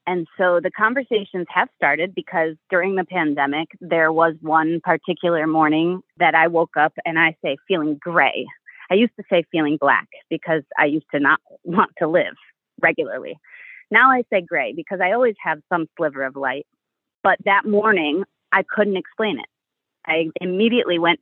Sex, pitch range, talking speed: female, 165-220 Hz, 175 wpm